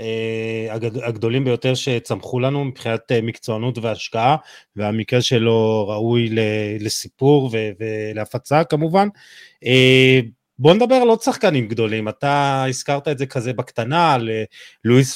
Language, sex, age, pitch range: Hebrew, male, 30-49, 125-175 Hz